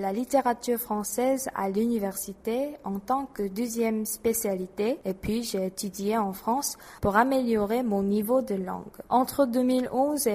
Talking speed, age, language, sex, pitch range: 140 wpm, 20-39, French, female, 200-245 Hz